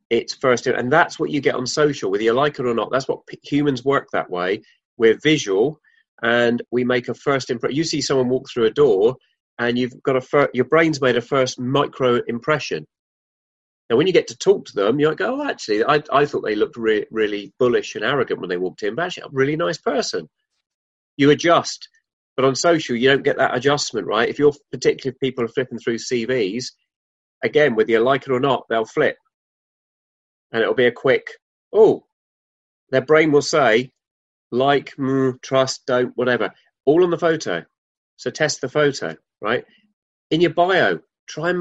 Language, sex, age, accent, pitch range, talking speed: English, male, 30-49, British, 125-165 Hz, 205 wpm